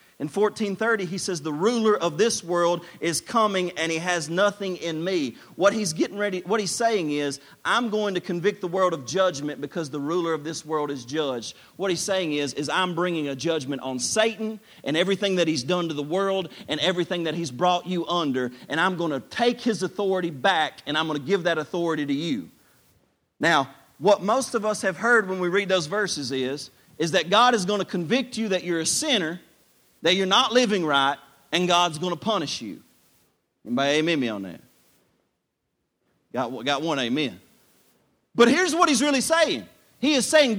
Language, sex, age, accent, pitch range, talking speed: English, male, 40-59, American, 180-250 Hz, 205 wpm